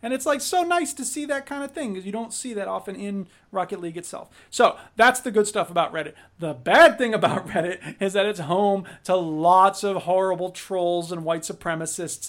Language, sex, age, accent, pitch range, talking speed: English, male, 40-59, American, 165-205 Hz, 220 wpm